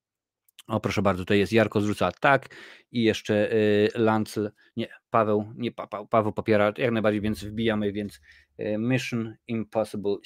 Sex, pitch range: male, 100-115 Hz